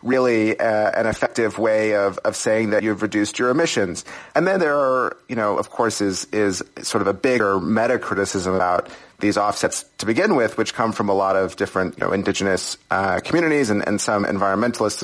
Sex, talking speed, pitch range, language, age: male, 205 wpm, 100-115 Hz, English, 30-49